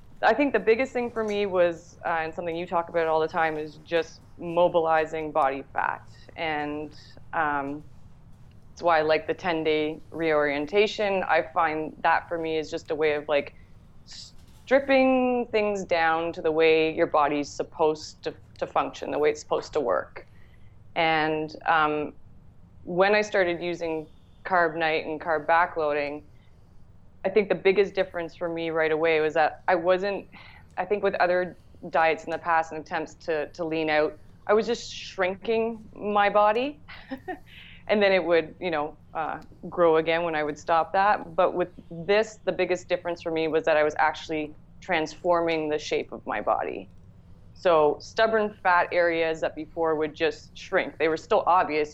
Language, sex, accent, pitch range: English, female, American, 150-185 Hz